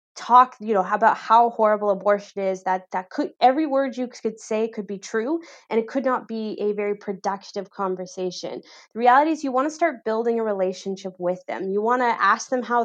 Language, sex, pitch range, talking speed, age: English, female, 195-235 Hz, 215 wpm, 20-39